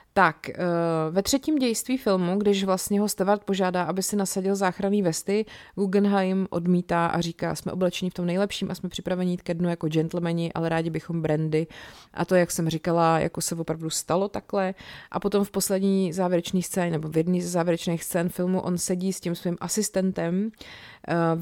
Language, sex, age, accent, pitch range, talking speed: Czech, female, 30-49, native, 170-195 Hz, 185 wpm